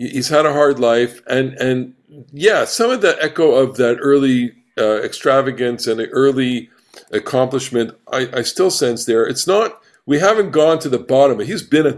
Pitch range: 125-175 Hz